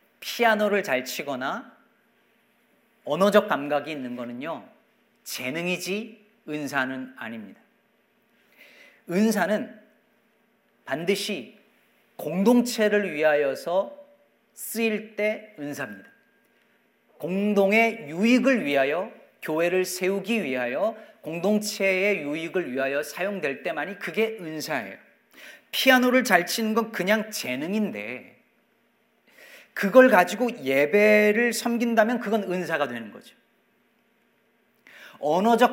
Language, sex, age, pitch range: Korean, male, 40-59, 155-230 Hz